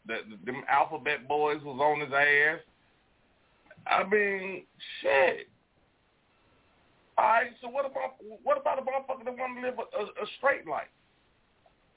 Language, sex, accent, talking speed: English, male, American, 135 wpm